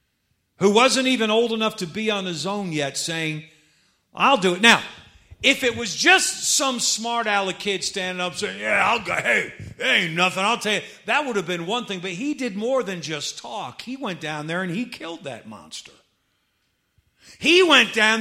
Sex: male